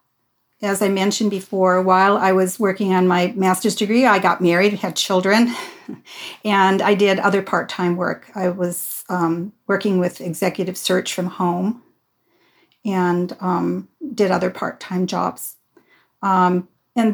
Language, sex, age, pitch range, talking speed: English, female, 50-69, 185-220 Hz, 140 wpm